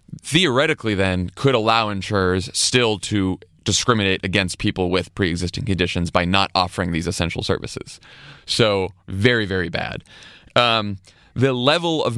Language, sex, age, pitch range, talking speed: English, male, 30-49, 90-110 Hz, 135 wpm